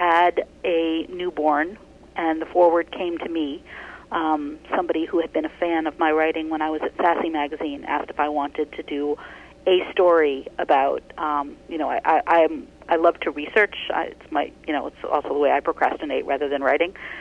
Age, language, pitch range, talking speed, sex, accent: 40-59, English, 150-185 Hz, 200 wpm, female, American